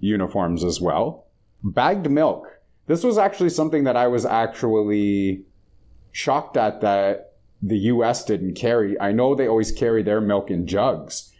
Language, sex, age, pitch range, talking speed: English, male, 30-49, 95-115 Hz, 155 wpm